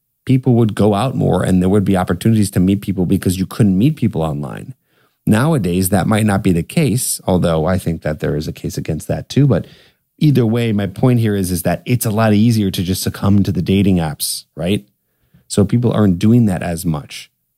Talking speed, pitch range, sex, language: 220 wpm, 90-115 Hz, male, English